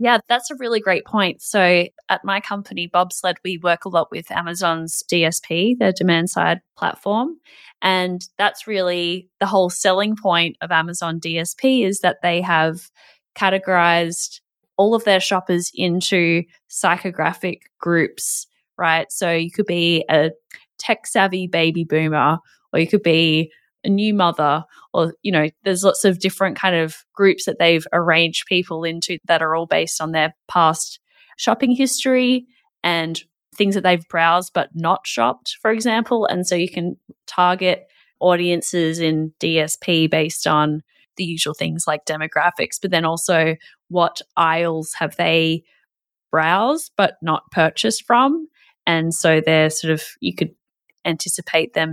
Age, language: 20-39, English